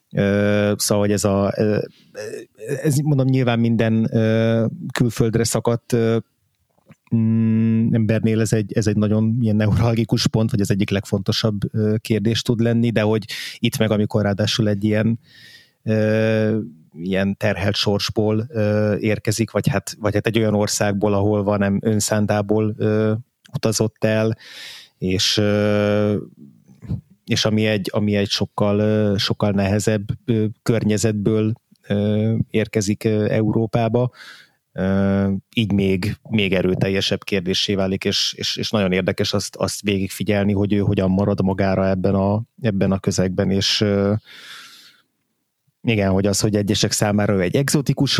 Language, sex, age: Hungarian, male, 30-49